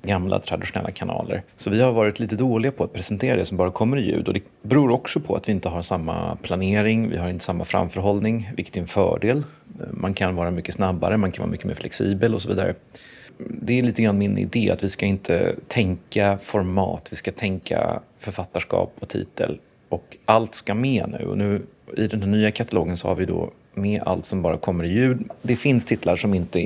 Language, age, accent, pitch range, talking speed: Swedish, 30-49, native, 90-110 Hz, 220 wpm